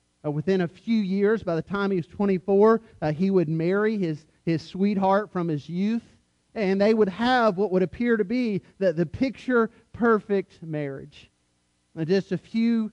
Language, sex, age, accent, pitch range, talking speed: English, male, 40-59, American, 140-185 Hz, 175 wpm